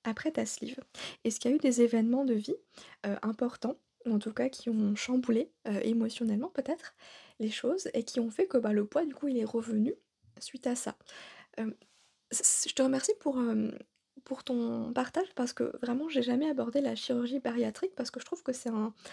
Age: 20-39